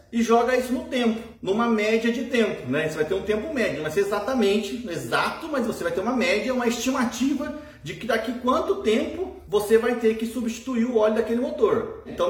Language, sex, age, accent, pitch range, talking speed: Portuguese, male, 30-49, Brazilian, 205-275 Hz, 220 wpm